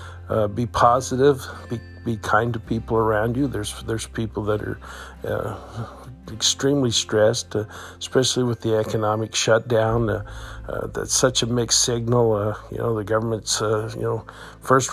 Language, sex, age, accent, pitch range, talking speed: English, male, 50-69, American, 110-120 Hz, 160 wpm